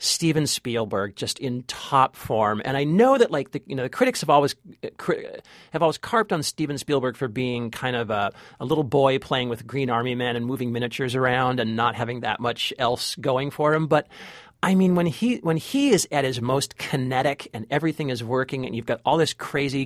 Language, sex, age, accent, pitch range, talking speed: English, male, 40-59, American, 130-165 Hz, 225 wpm